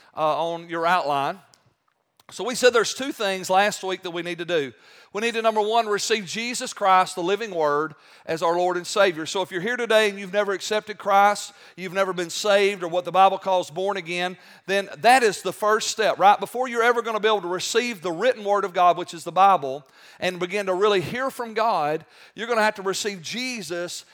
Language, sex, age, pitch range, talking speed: English, male, 40-59, 175-210 Hz, 230 wpm